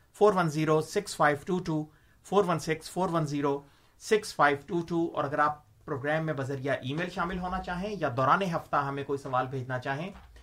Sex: male